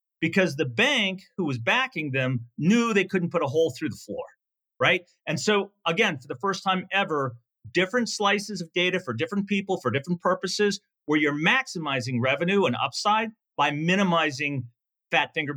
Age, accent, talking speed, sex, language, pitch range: 40-59, American, 175 wpm, male, English, 130-180 Hz